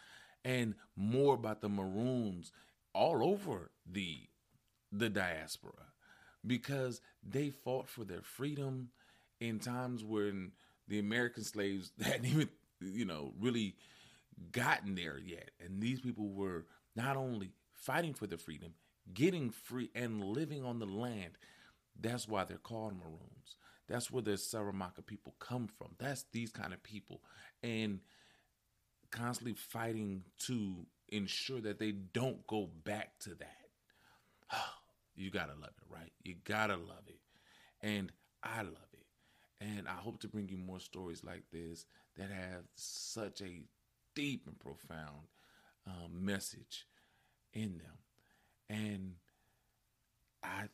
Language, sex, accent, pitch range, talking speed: English, male, American, 95-120 Hz, 130 wpm